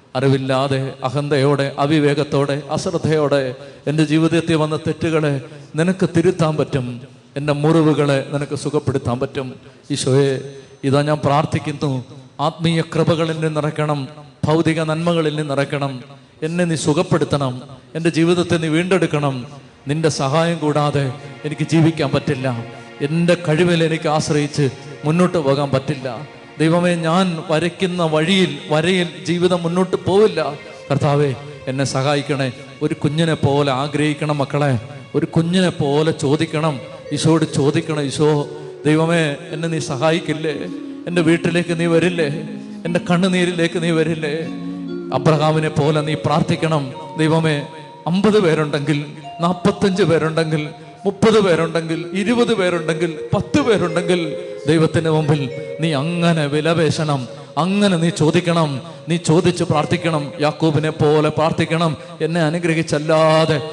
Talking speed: 105 wpm